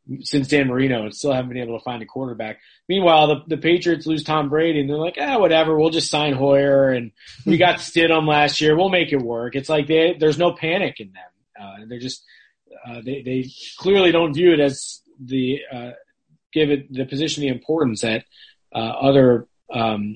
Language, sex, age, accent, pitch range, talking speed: English, male, 30-49, American, 120-155 Hz, 210 wpm